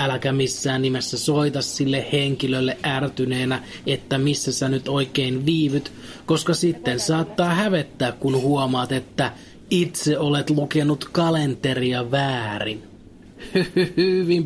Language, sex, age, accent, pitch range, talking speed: Finnish, male, 30-49, native, 125-155 Hz, 110 wpm